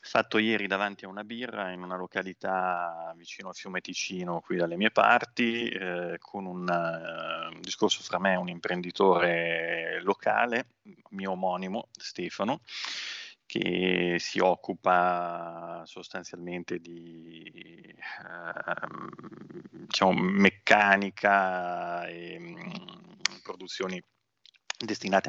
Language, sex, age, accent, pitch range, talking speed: Italian, male, 30-49, native, 85-100 Hz, 105 wpm